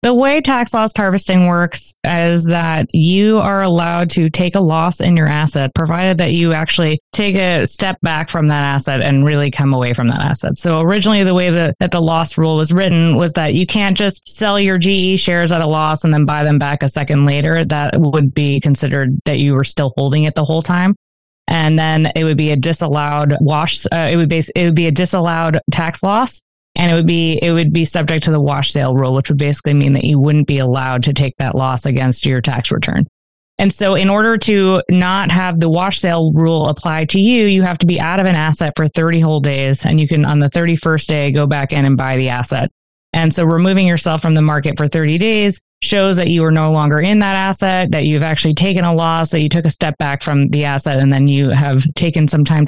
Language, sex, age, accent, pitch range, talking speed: English, female, 20-39, American, 145-175 Hz, 240 wpm